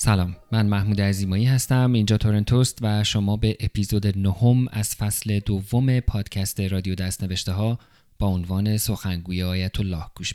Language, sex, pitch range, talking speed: Persian, male, 100-120 Hz, 145 wpm